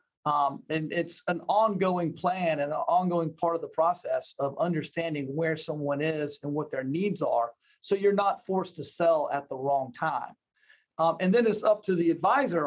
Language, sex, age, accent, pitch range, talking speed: English, male, 50-69, American, 155-195 Hz, 195 wpm